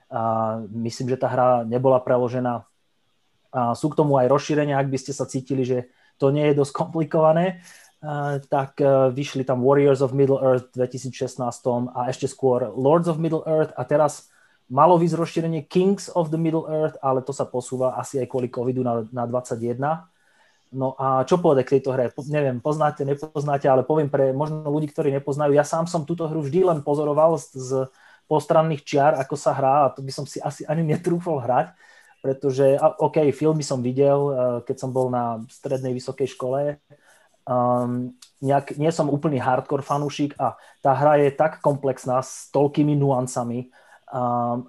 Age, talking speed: 30-49, 180 wpm